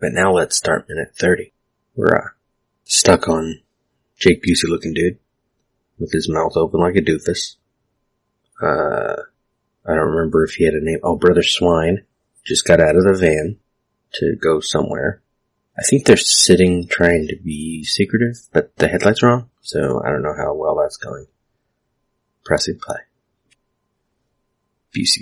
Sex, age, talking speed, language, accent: male, 30-49, 155 wpm, English, American